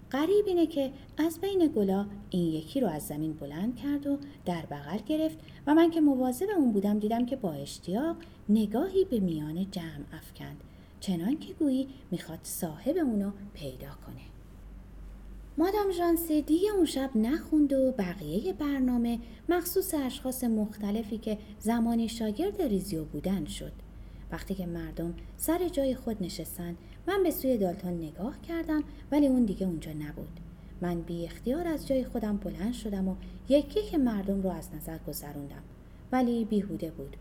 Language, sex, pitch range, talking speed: Persian, female, 180-290 Hz, 155 wpm